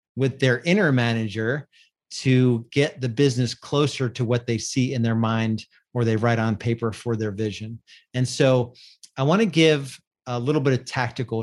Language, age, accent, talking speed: English, 40-59, American, 180 wpm